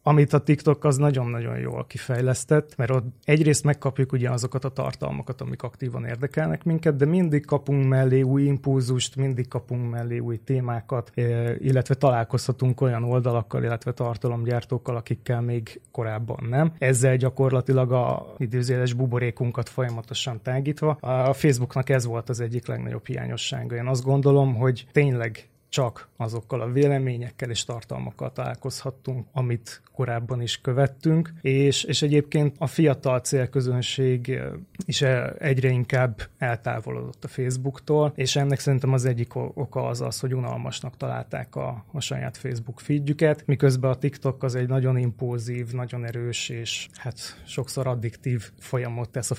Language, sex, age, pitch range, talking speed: Hungarian, male, 20-39, 120-140 Hz, 140 wpm